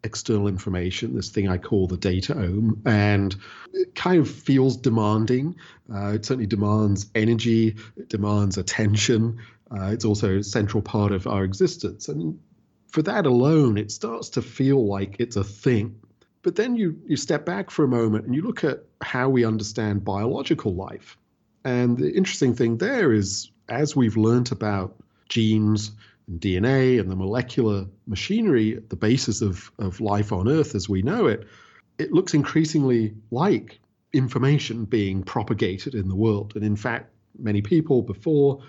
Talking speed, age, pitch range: 165 wpm, 40-59, 105-125 Hz